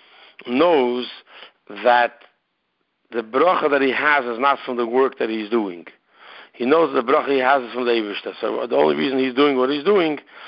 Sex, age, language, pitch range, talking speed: male, 60-79, English, 120-140 Hz, 190 wpm